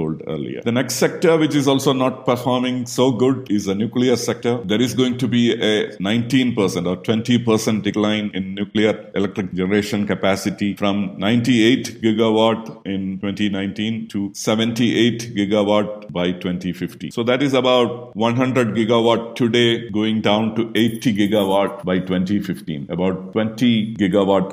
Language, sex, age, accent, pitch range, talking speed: English, male, 50-69, Indian, 95-120 Hz, 140 wpm